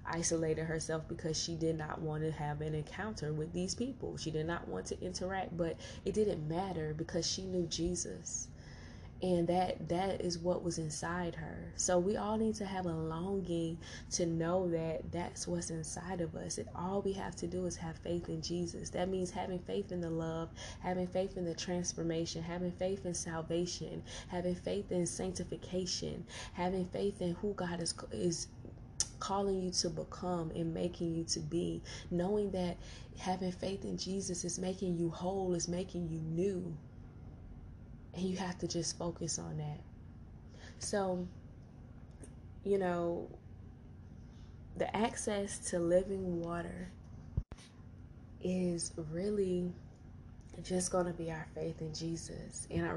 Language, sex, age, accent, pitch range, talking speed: English, female, 20-39, American, 160-185 Hz, 160 wpm